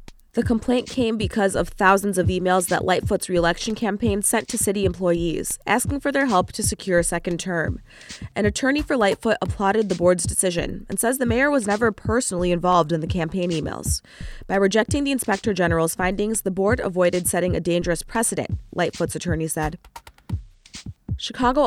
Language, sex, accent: English, female, American